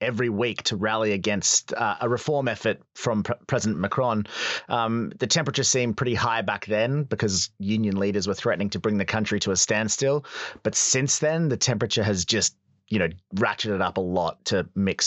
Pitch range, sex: 100-130 Hz, male